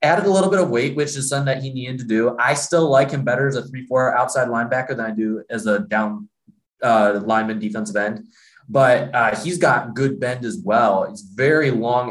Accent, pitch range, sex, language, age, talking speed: American, 115-140 Hz, male, English, 20-39, 230 wpm